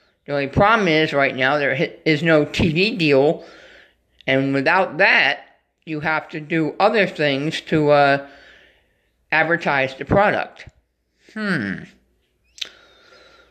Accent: American